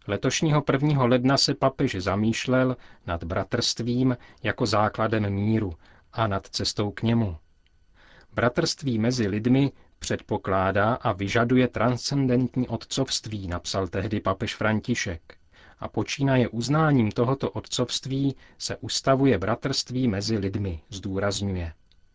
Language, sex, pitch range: Czech, male, 100-125 Hz